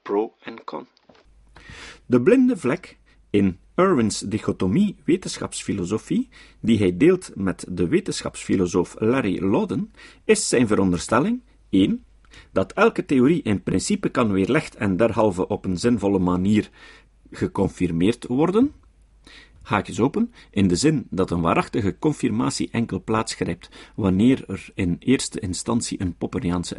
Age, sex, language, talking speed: 50-69, male, Dutch, 115 wpm